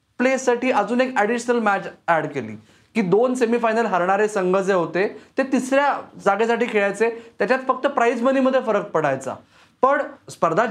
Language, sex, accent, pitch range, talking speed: Marathi, male, native, 175-220 Hz, 145 wpm